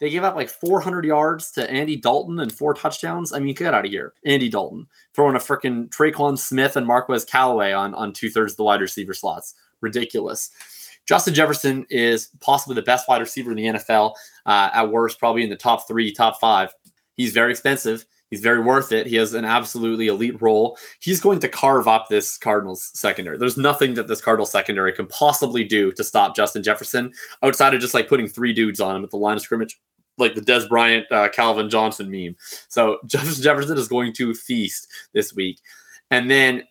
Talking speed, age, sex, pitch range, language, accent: 205 wpm, 20-39, male, 110-135 Hz, English, American